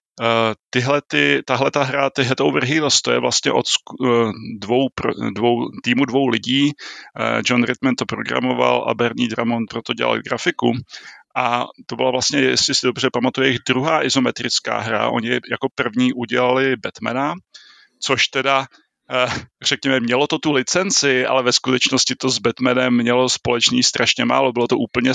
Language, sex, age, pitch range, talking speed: Czech, male, 30-49, 115-130 Hz, 155 wpm